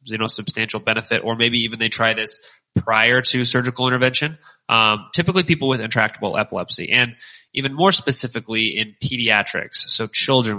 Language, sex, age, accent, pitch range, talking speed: English, male, 20-39, American, 110-125 Hz, 160 wpm